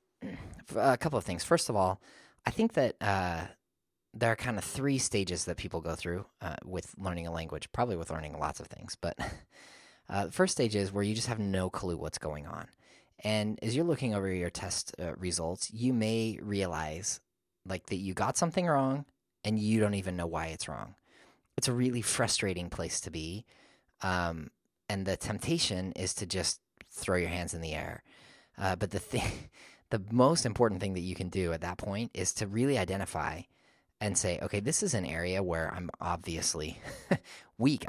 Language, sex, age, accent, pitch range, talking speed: English, male, 30-49, American, 85-110 Hz, 195 wpm